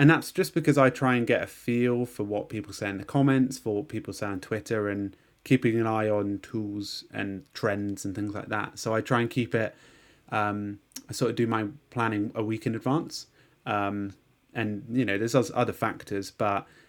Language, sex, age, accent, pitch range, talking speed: English, male, 20-39, British, 105-130 Hz, 215 wpm